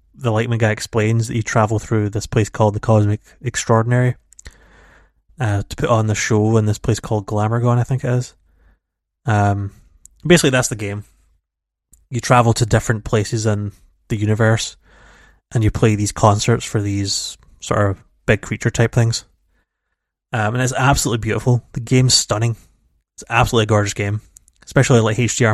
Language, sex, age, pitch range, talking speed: English, male, 20-39, 90-120 Hz, 165 wpm